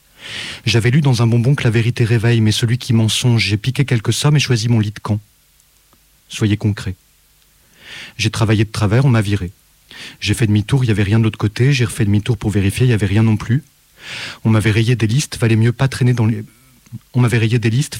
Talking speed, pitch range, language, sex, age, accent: 230 wpm, 110-130 Hz, French, male, 30-49, French